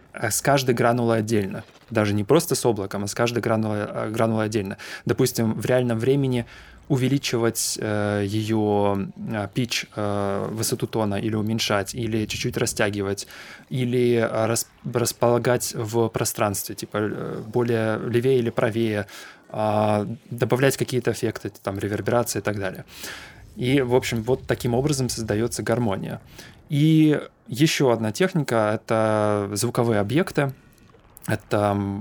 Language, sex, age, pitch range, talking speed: Russian, male, 20-39, 105-125 Hz, 125 wpm